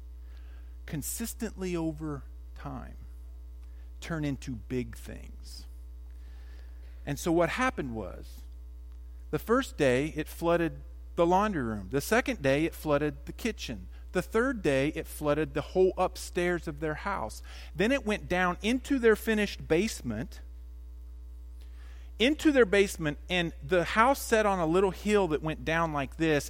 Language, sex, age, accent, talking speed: English, male, 50-69, American, 140 wpm